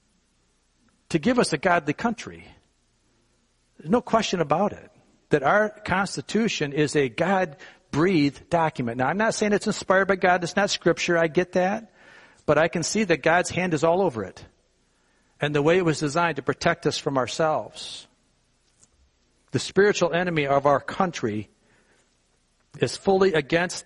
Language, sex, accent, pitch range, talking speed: English, male, American, 140-180 Hz, 160 wpm